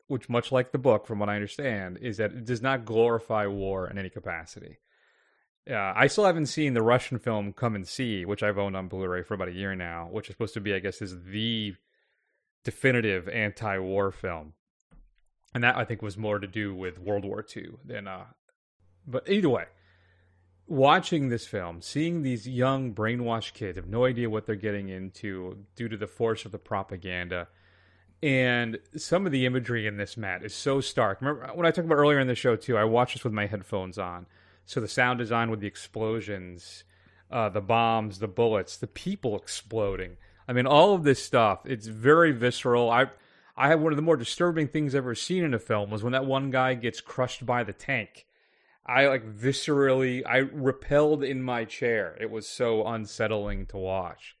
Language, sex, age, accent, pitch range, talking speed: English, male, 30-49, American, 100-130 Hz, 200 wpm